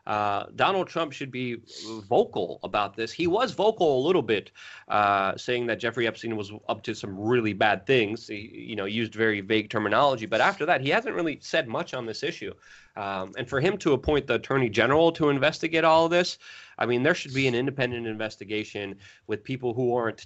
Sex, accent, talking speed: male, American, 205 wpm